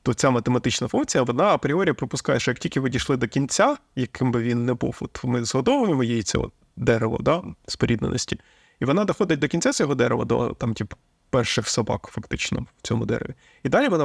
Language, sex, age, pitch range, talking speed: Ukrainian, male, 20-39, 115-140 Hz, 195 wpm